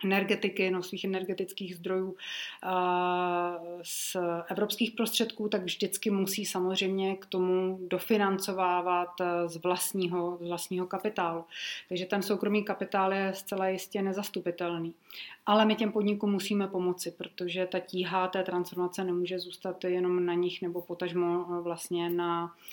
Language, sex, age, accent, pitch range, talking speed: Czech, female, 30-49, native, 180-195 Hz, 120 wpm